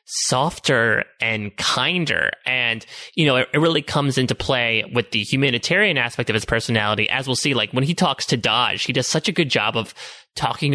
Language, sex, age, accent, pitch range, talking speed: English, male, 30-49, American, 115-140 Hz, 200 wpm